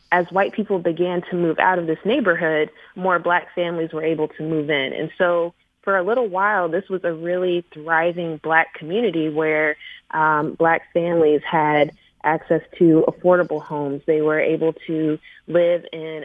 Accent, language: American, English